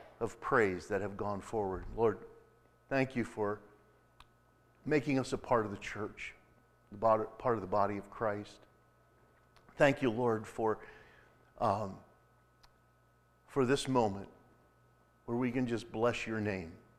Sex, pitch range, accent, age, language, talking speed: male, 105-120 Hz, American, 50-69, English, 140 wpm